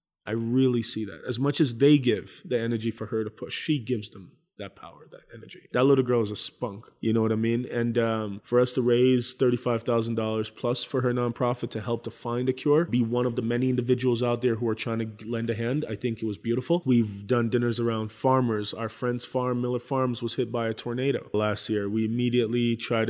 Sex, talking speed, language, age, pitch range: male, 235 wpm, English, 20-39, 110-125 Hz